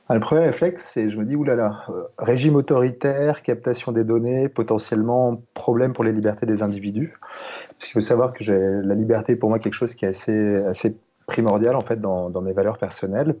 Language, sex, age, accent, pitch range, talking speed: French, male, 30-49, French, 100-125 Hz, 205 wpm